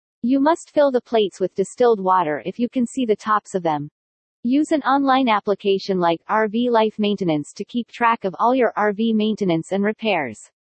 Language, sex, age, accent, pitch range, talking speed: English, female, 40-59, American, 190-245 Hz, 190 wpm